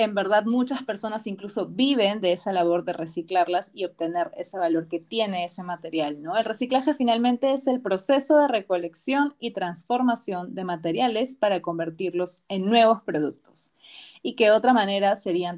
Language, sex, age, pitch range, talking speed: Spanish, female, 30-49, 180-230 Hz, 165 wpm